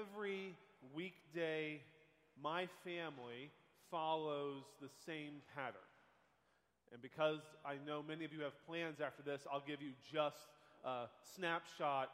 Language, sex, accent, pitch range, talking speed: English, male, American, 150-180 Hz, 125 wpm